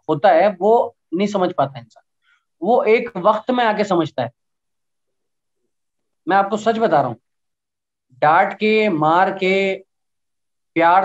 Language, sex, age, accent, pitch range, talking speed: Hindi, male, 20-39, native, 170-220 Hz, 135 wpm